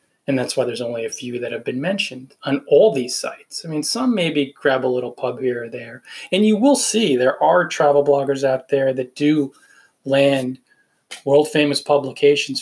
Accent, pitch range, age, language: American, 130-145 Hz, 30-49, English